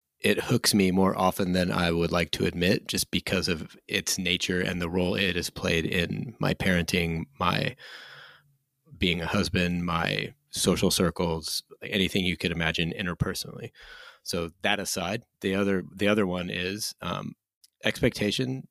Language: English